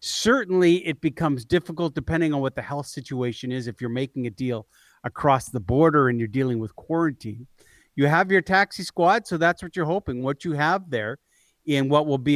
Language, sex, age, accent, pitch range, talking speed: English, male, 50-69, American, 135-185 Hz, 205 wpm